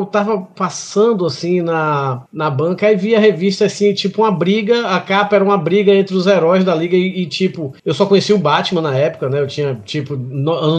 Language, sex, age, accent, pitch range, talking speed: Portuguese, male, 20-39, Brazilian, 155-205 Hz, 215 wpm